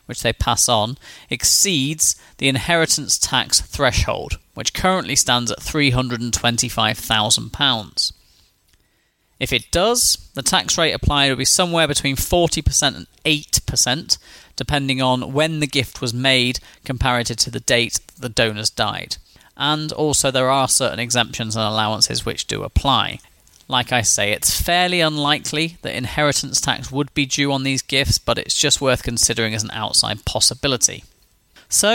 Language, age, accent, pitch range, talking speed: English, 30-49, British, 115-150 Hz, 145 wpm